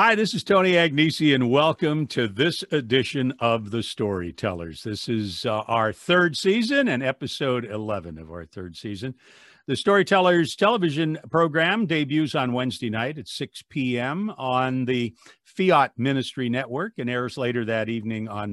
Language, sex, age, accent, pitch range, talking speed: English, male, 50-69, American, 115-150 Hz, 155 wpm